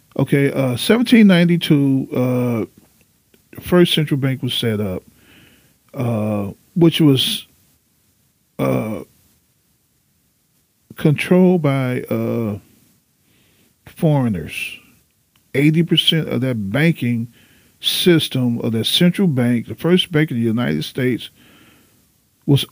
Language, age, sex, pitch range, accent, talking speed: English, 40-59, male, 115-165 Hz, American, 105 wpm